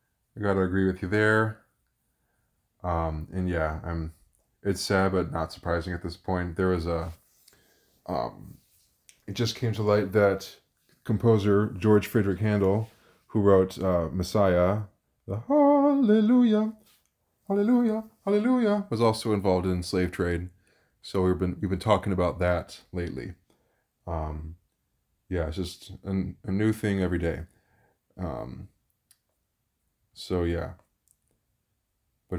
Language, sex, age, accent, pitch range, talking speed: English, male, 20-39, American, 85-105 Hz, 130 wpm